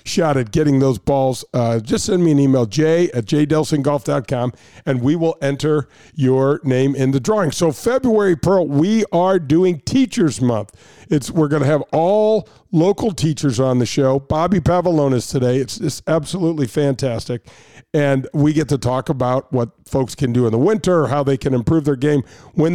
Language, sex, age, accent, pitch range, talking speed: English, male, 50-69, American, 135-165 Hz, 185 wpm